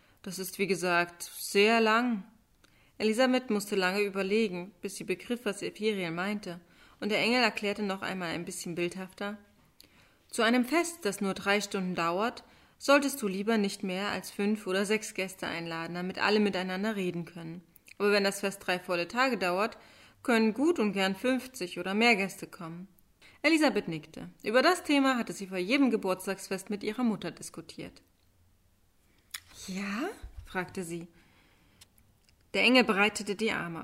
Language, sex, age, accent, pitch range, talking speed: German, female, 30-49, German, 175-220 Hz, 155 wpm